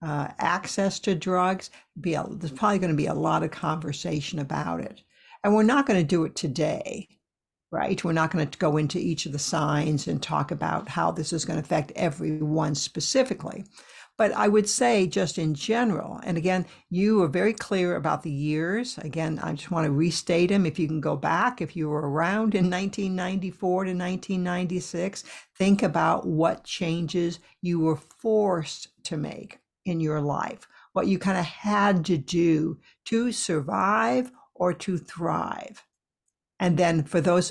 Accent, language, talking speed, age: American, English, 180 wpm, 60-79